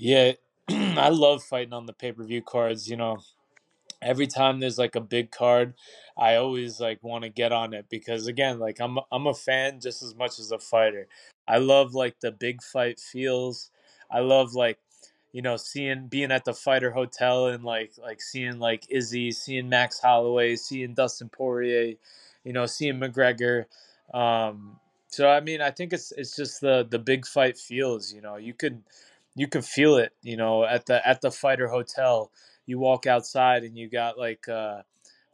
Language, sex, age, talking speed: English, male, 20-39, 185 wpm